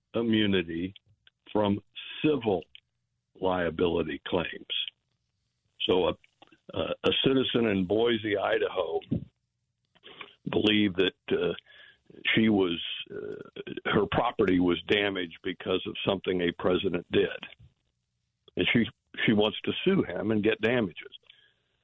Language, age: English, 60-79